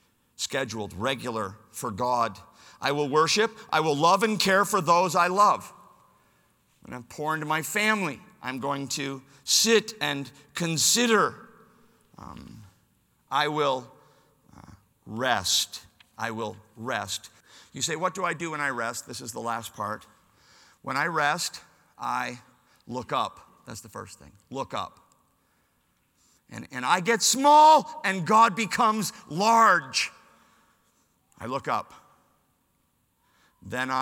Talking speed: 130 wpm